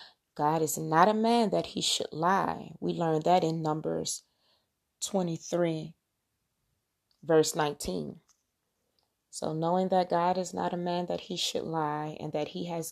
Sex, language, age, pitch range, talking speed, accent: female, English, 30-49, 150-185 Hz, 155 wpm, American